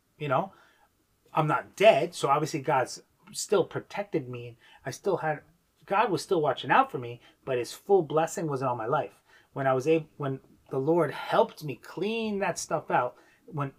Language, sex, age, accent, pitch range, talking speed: English, male, 30-49, American, 130-205 Hz, 185 wpm